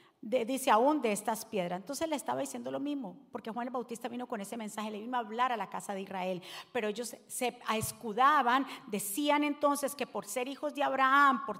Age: 40-59